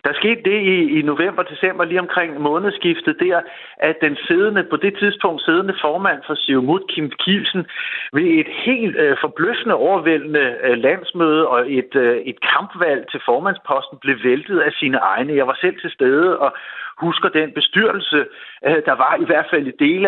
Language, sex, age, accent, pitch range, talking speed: Danish, male, 50-69, native, 150-220 Hz, 180 wpm